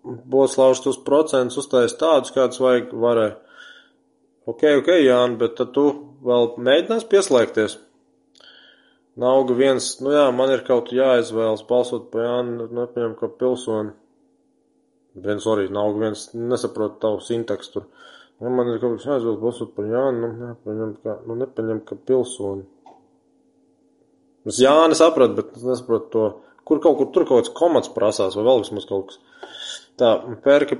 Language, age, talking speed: English, 20-39, 150 wpm